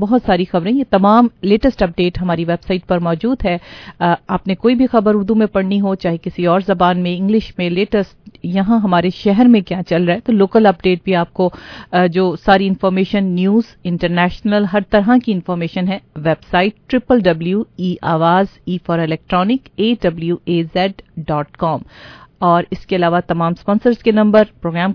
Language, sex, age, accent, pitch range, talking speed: English, female, 40-59, Indian, 175-205 Hz, 145 wpm